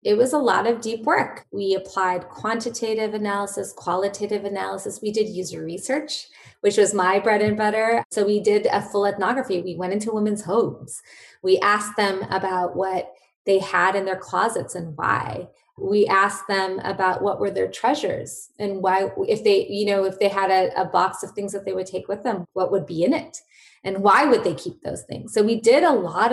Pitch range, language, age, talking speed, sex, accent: 195-240 Hz, English, 20-39, 205 wpm, female, American